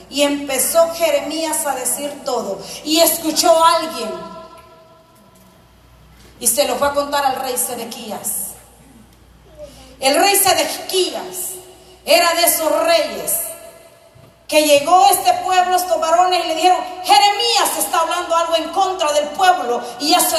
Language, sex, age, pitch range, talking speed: Spanish, female, 30-49, 285-365 Hz, 135 wpm